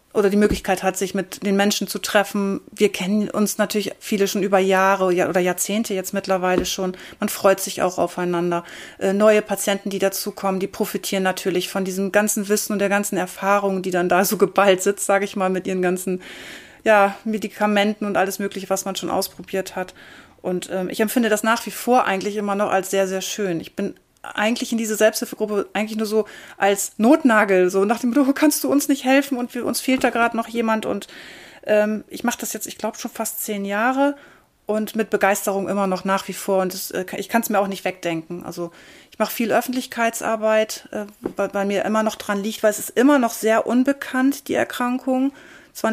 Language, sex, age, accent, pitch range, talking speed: German, female, 30-49, German, 195-225 Hz, 210 wpm